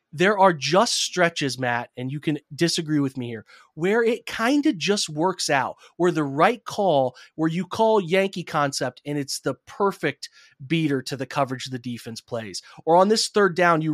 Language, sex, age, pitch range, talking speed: English, male, 30-49, 140-180 Hz, 195 wpm